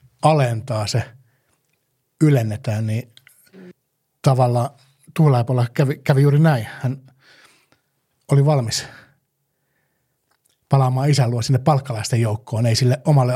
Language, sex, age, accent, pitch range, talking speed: Finnish, male, 60-79, native, 120-140 Hz, 100 wpm